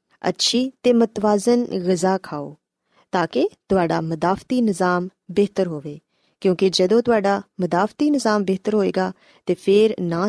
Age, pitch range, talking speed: 20-39, 175-225 Hz, 130 wpm